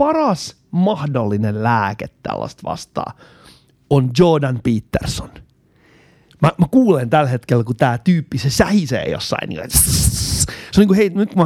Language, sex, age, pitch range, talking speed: Finnish, male, 30-49, 125-180 Hz, 130 wpm